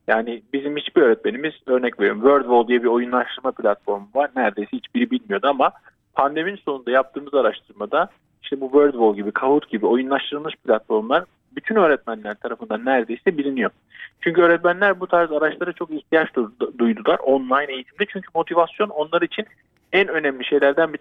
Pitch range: 125-180 Hz